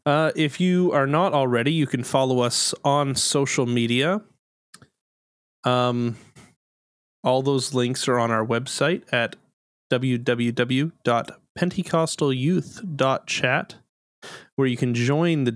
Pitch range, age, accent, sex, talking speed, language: 120-145 Hz, 30-49, American, male, 110 wpm, English